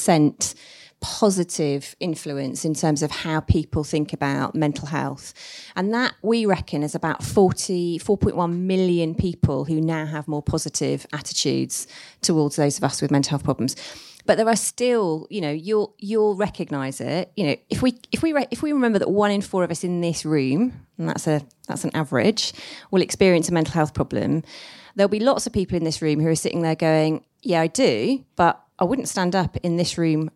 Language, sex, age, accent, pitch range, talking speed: English, female, 30-49, British, 155-205 Hz, 195 wpm